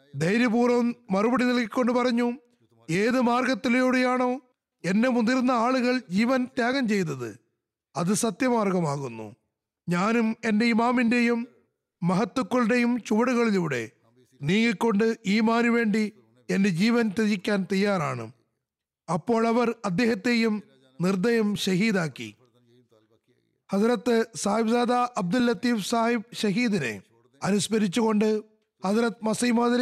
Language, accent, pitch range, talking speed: Malayalam, native, 195-240 Hz, 85 wpm